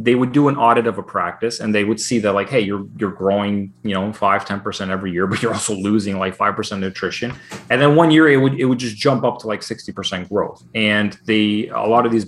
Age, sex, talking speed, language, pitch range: 30-49, male, 270 wpm, English, 95-120 Hz